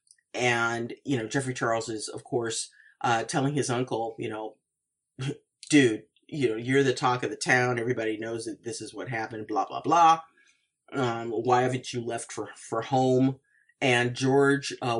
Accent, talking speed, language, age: American, 175 wpm, English, 40-59